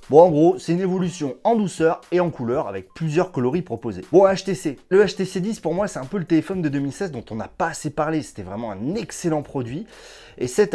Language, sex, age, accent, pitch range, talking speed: French, male, 30-49, French, 140-185 Hz, 235 wpm